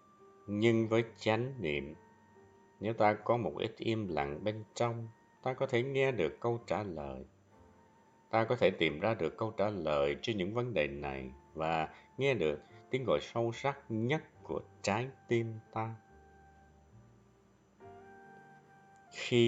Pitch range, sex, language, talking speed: 95-120 Hz, male, Vietnamese, 150 wpm